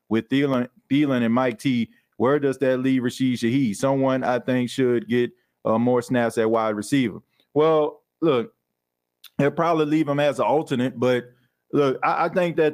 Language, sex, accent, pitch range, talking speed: English, male, American, 120-140 Hz, 180 wpm